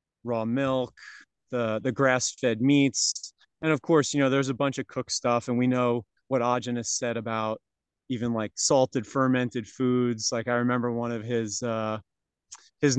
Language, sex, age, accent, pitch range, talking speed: English, male, 30-49, American, 120-145 Hz, 180 wpm